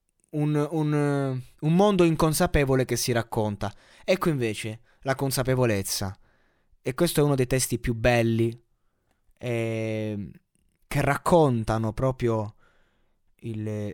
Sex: male